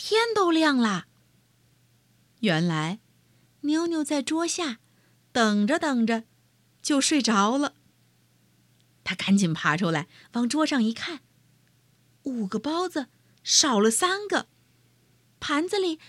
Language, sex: Chinese, female